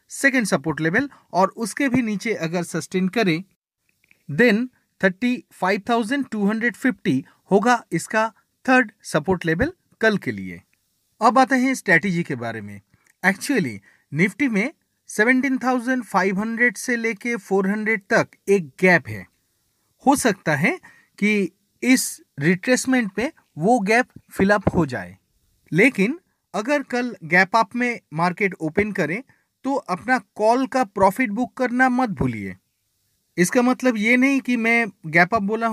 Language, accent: Hindi, native